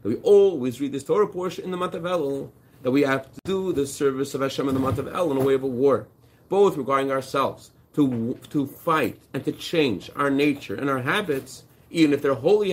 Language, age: English, 30-49